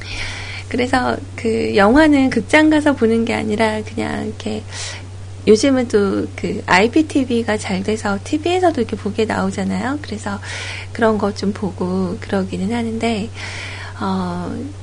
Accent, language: native, Korean